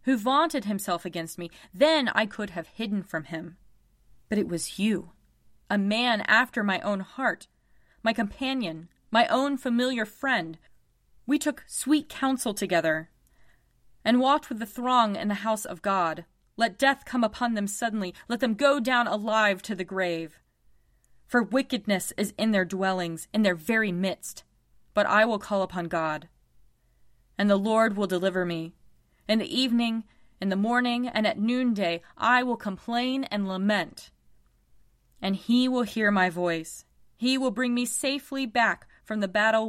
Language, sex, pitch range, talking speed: English, female, 180-245 Hz, 165 wpm